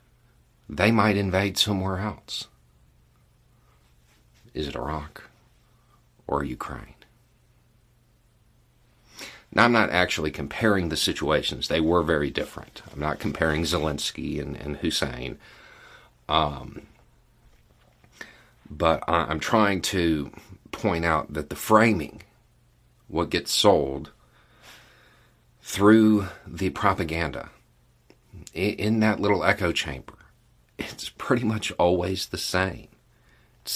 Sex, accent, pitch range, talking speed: male, American, 75-110 Hz, 100 wpm